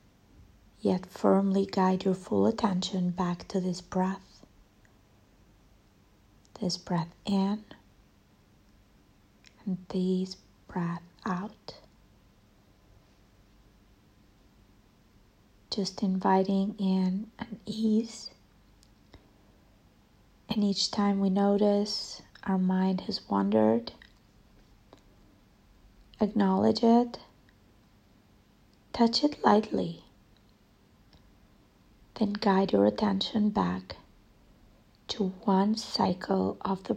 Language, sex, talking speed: English, female, 75 wpm